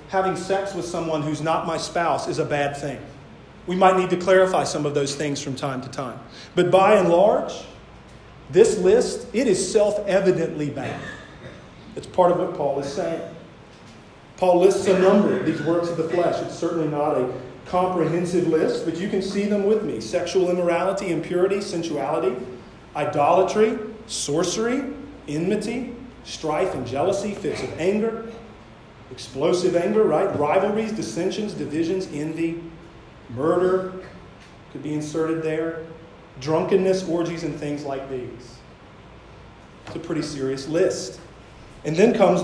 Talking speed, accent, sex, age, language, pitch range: 145 wpm, American, male, 40-59, English, 145-190 Hz